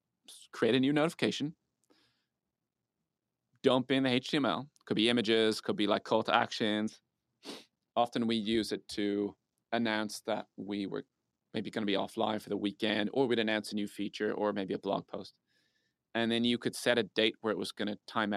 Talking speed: 190 wpm